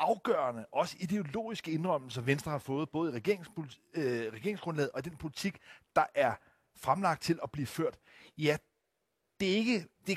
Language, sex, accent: Danish, male, native